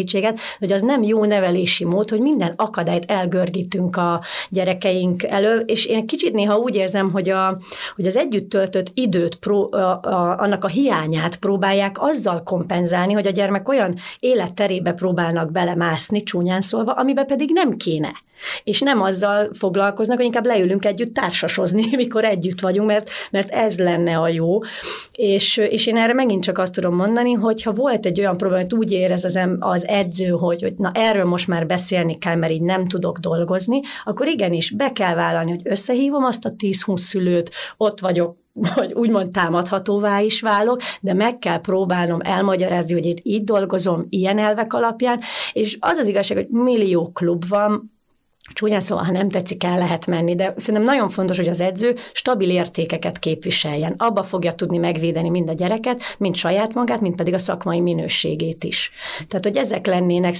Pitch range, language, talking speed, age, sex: 180-215 Hz, Hungarian, 170 wpm, 30-49, female